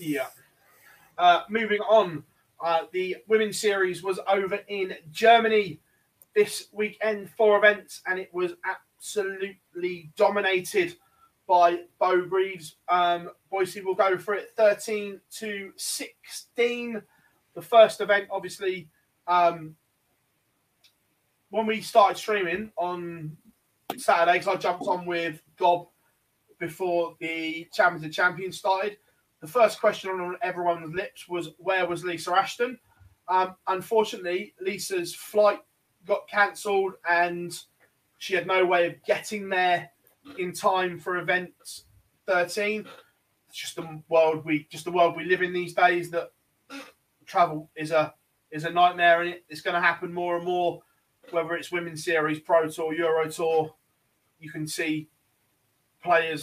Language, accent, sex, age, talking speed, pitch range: English, British, male, 20-39, 135 wpm, 165-195 Hz